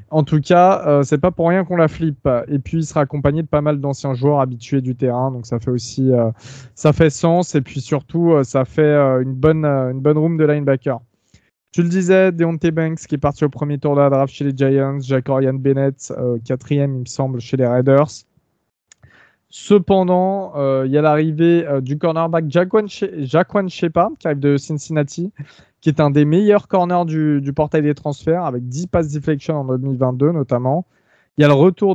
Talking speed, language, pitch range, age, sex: 210 wpm, French, 135-160 Hz, 20-39, male